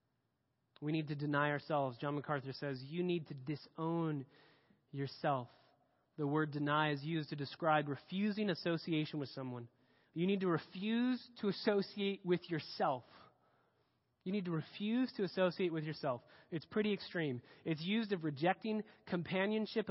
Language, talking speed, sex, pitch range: English, 145 wpm, male, 145-195 Hz